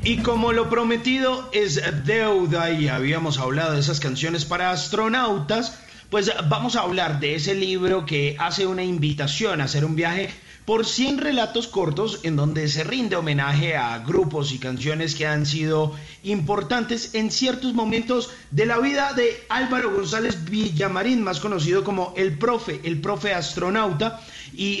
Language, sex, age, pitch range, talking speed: Spanish, male, 30-49, 145-205 Hz, 155 wpm